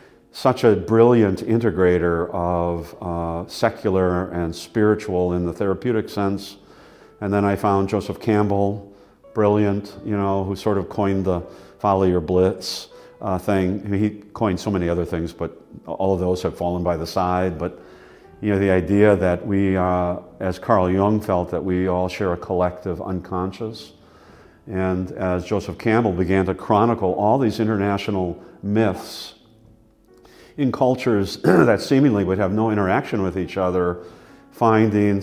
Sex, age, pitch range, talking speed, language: male, 50-69, 90-110 Hz, 150 wpm, English